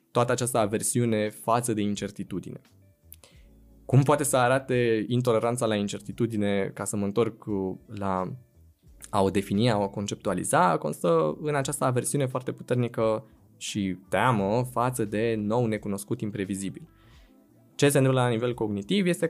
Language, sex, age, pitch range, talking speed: Romanian, male, 20-39, 105-140 Hz, 135 wpm